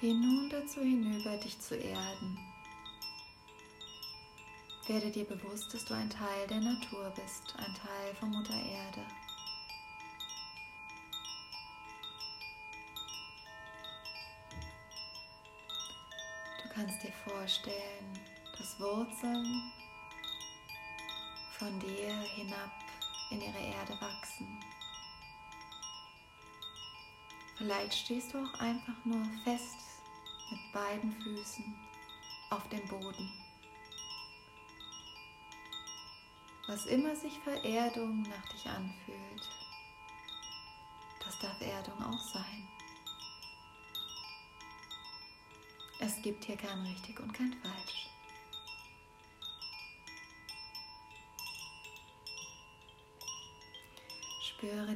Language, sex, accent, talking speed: German, female, German, 75 wpm